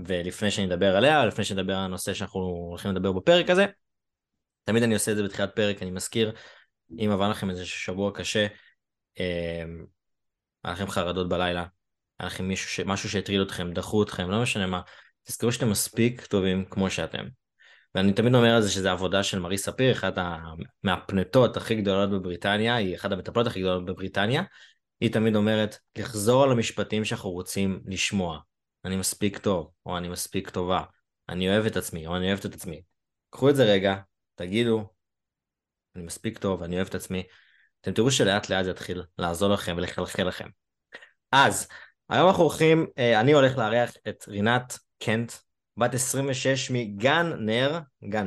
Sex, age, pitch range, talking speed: male, 20-39, 95-120 Hz, 160 wpm